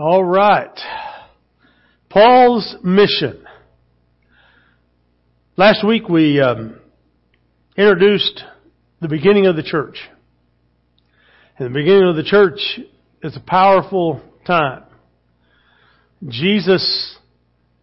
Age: 50-69